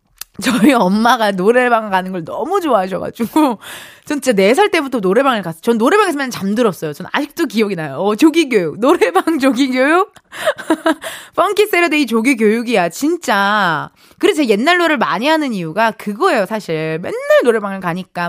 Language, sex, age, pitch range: Korean, female, 20-39, 200-320 Hz